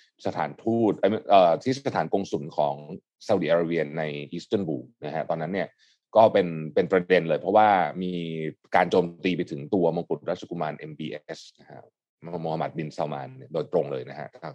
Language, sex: Thai, male